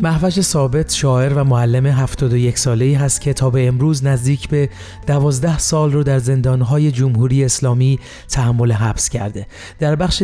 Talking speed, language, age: 140 wpm, Persian, 30-49